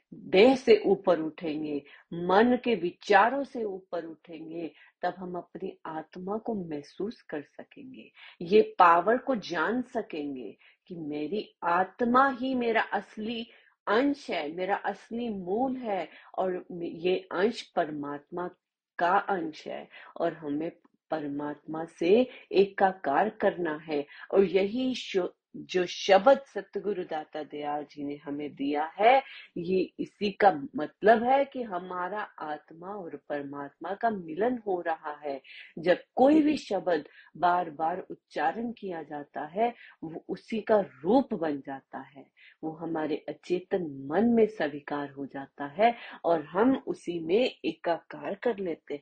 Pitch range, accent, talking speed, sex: 155-225 Hz, native, 140 wpm, female